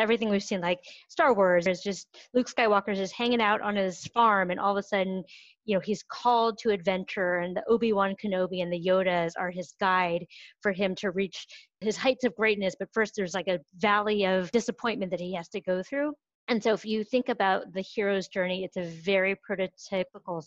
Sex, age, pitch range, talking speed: female, 30-49, 180-215 Hz, 210 wpm